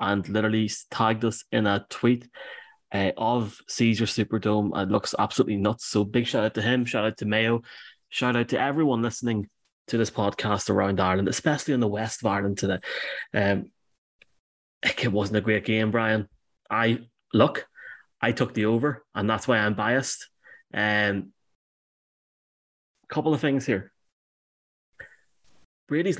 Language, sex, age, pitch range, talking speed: English, male, 20-39, 105-120 Hz, 150 wpm